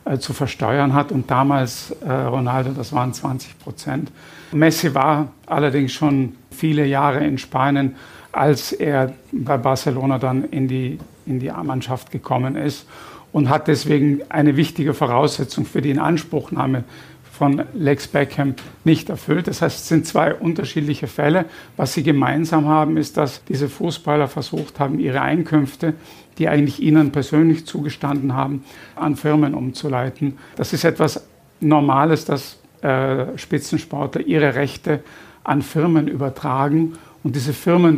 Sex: male